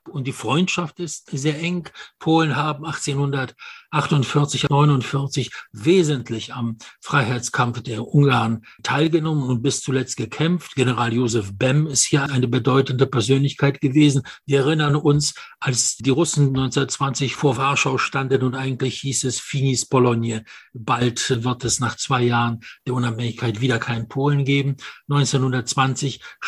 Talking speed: 135 wpm